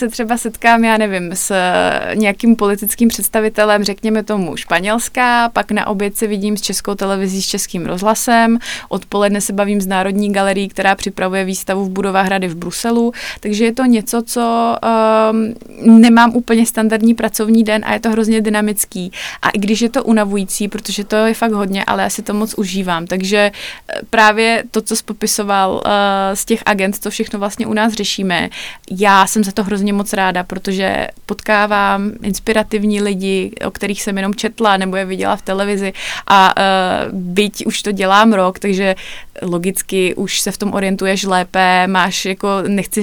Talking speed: 170 wpm